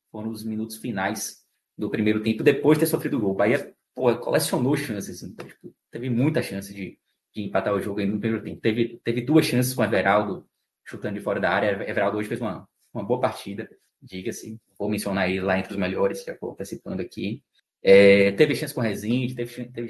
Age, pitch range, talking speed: 20-39, 105-130 Hz, 200 wpm